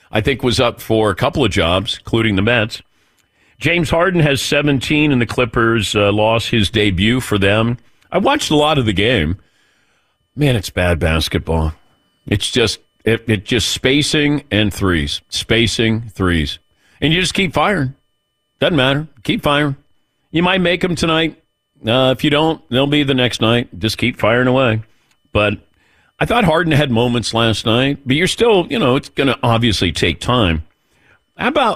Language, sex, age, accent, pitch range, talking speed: English, male, 50-69, American, 100-145 Hz, 180 wpm